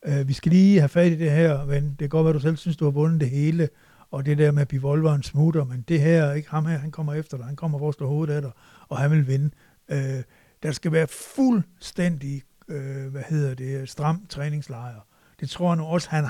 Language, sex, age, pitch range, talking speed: Danish, male, 60-79, 135-155 Hz, 250 wpm